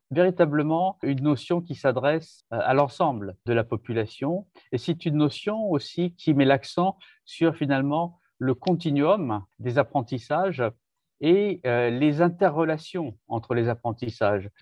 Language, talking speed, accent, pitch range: French, 125 wpm, French, 125-170 Hz